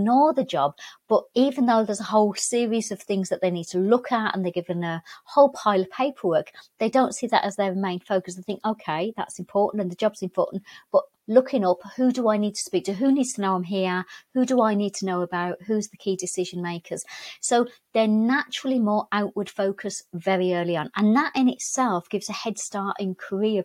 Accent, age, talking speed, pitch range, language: British, 40-59, 230 wpm, 180-240 Hz, English